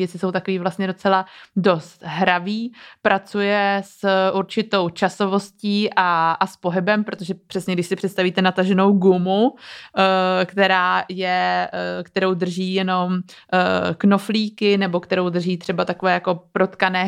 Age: 20-39